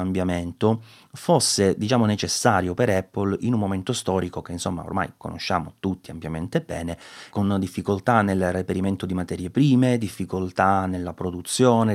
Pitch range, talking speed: 90-105 Hz, 135 wpm